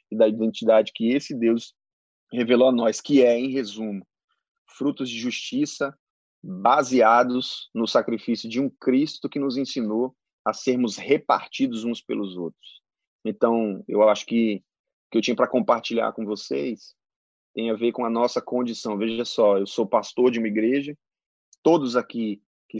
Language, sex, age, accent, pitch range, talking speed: Portuguese, male, 20-39, Brazilian, 110-135 Hz, 160 wpm